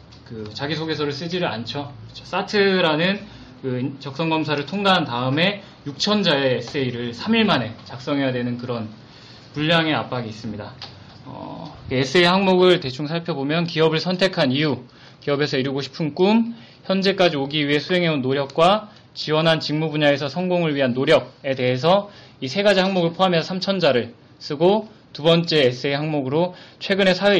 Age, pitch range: 20-39, 130-170 Hz